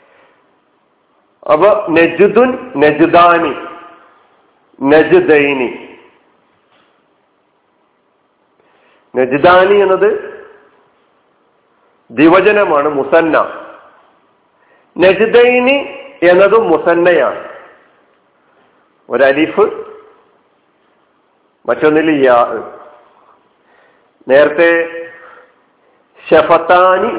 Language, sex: Malayalam, male